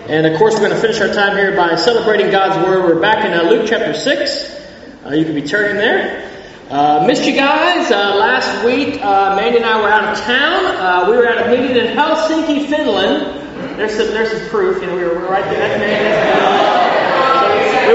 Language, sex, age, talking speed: English, male, 30-49, 210 wpm